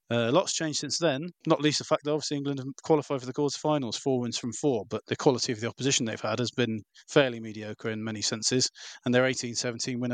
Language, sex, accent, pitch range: English, male, British, 120-135 Hz